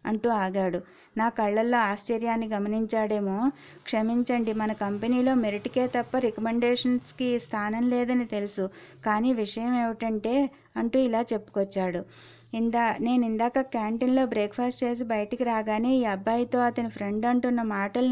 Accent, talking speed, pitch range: native, 115 wpm, 215-245 Hz